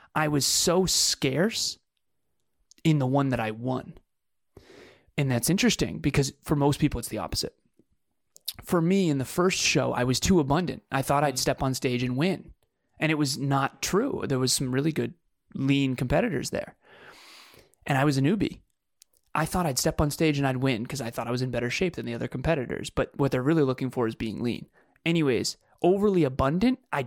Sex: male